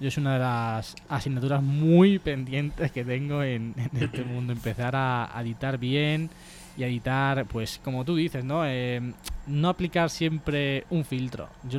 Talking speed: 175 wpm